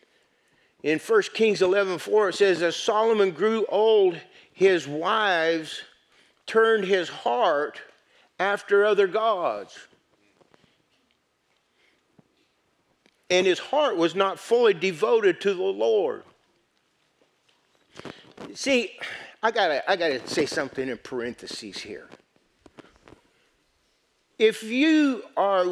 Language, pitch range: English, 170-275 Hz